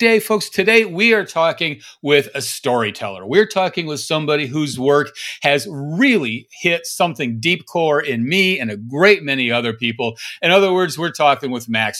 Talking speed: 175 wpm